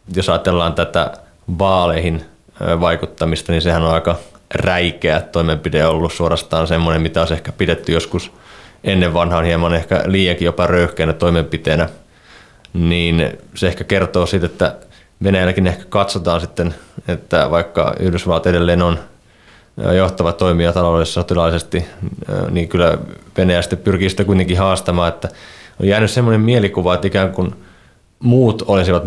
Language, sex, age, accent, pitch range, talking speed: Finnish, male, 20-39, native, 85-95 Hz, 130 wpm